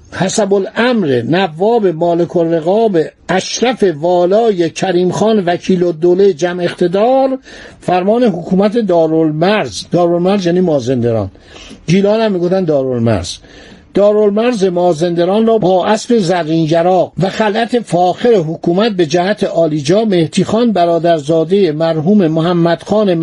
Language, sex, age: Persian, male, 60-79